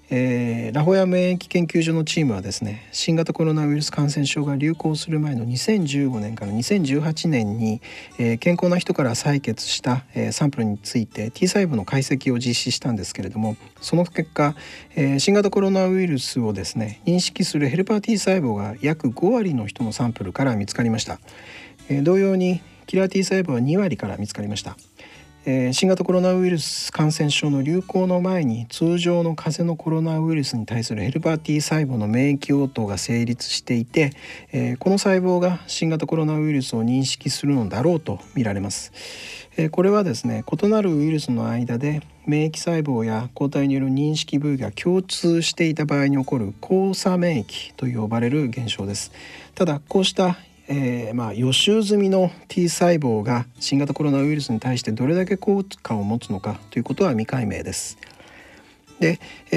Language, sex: Japanese, male